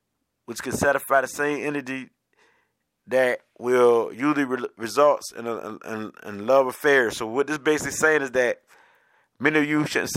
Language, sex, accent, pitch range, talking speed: English, male, American, 125-150 Hz, 170 wpm